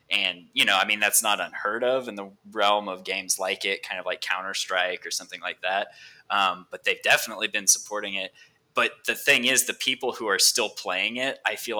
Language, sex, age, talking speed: English, male, 20-39, 225 wpm